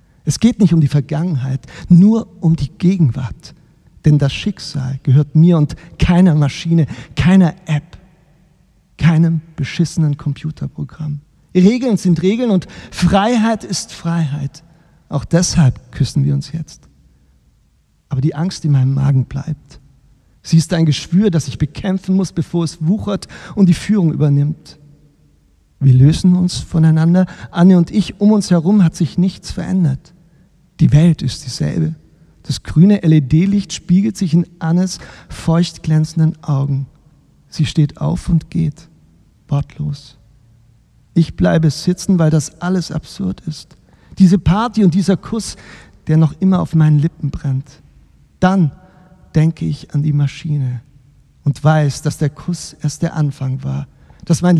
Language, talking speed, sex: German, 140 wpm, male